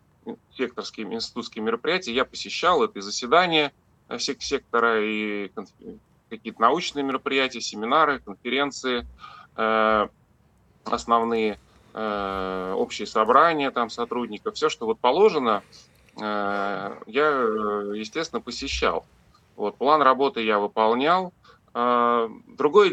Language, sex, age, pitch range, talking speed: Russian, male, 20-39, 110-140 Hz, 85 wpm